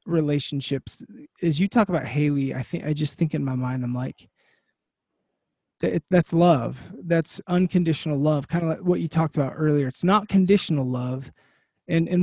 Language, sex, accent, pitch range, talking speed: English, male, American, 145-180 Hz, 170 wpm